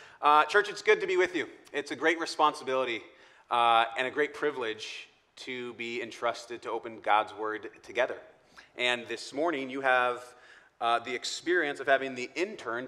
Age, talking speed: 30-49, 170 wpm